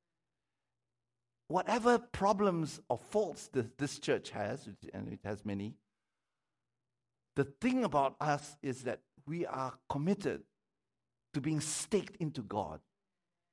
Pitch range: 115-155 Hz